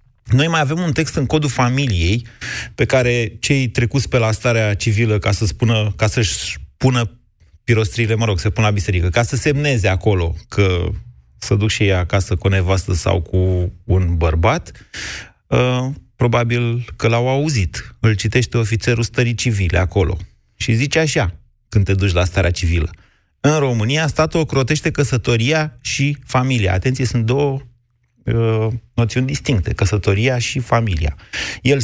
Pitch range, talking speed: 100-125 Hz, 150 wpm